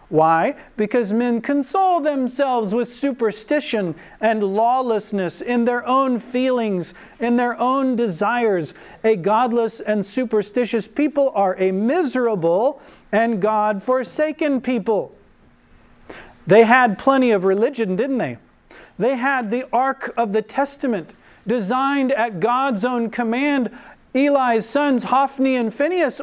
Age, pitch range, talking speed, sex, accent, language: 40-59, 195-260 Hz, 120 wpm, male, American, English